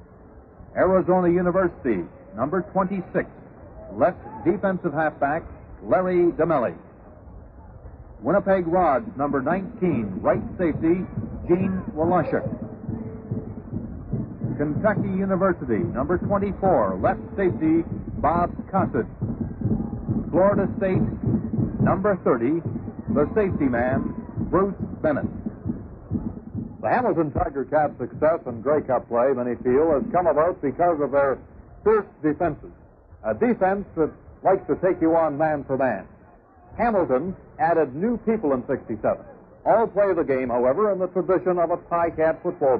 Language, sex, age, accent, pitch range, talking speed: English, male, 60-79, American, 150-190 Hz, 115 wpm